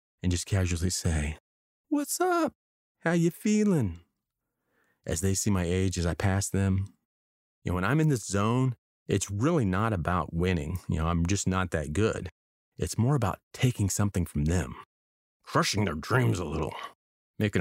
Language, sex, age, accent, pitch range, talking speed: English, male, 30-49, American, 85-110 Hz, 170 wpm